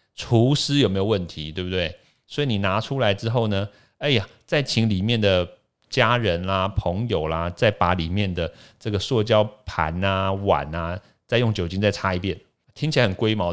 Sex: male